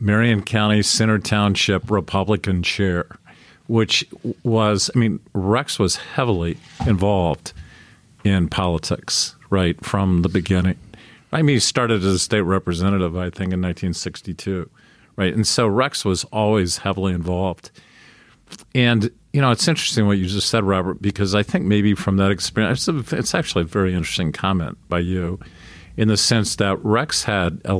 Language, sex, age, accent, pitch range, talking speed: English, male, 50-69, American, 95-110 Hz, 155 wpm